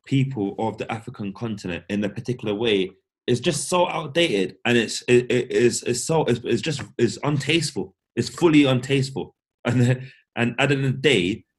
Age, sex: 20-39, male